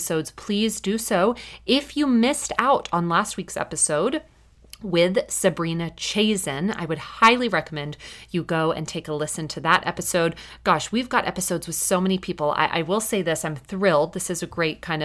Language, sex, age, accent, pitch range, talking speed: English, female, 30-49, American, 155-205 Hz, 190 wpm